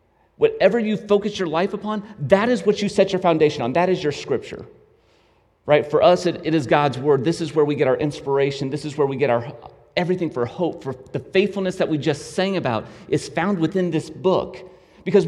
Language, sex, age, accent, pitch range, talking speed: English, male, 30-49, American, 125-180 Hz, 220 wpm